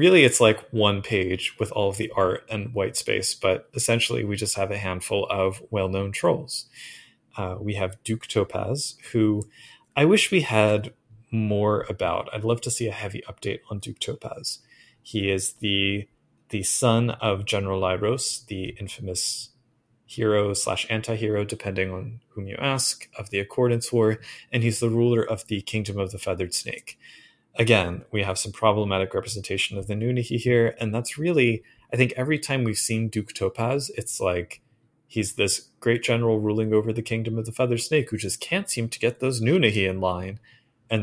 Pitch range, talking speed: 100-120 Hz, 180 wpm